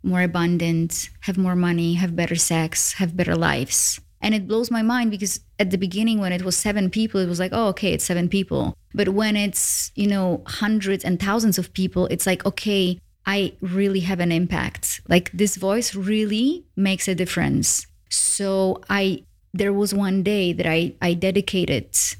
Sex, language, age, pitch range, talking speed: female, English, 20-39, 175-195 Hz, 185 wpm